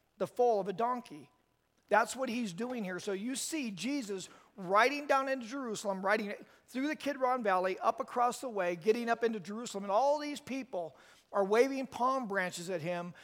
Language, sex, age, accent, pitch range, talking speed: English, male, 40-59, American, 200-245 Hz, 185 wpm